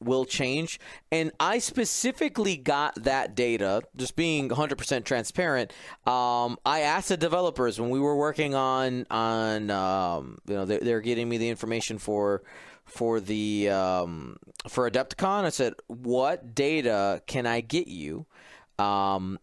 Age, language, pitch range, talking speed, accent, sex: 30-49, English, 115-160 Hz, 150 wpm, American, male